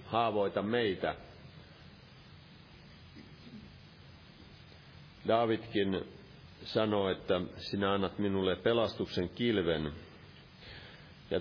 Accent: native